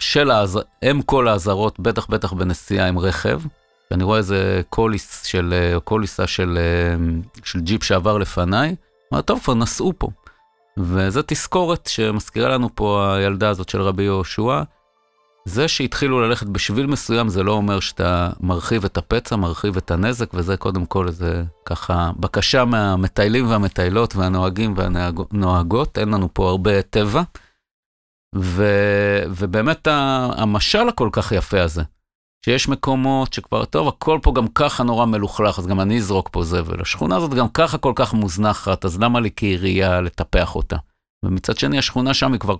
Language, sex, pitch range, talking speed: Hebrew, male, 95-125 Hz, 150 wpm